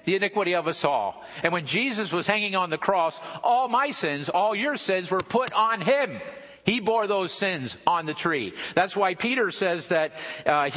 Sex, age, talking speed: male, 50-69, 200 wpm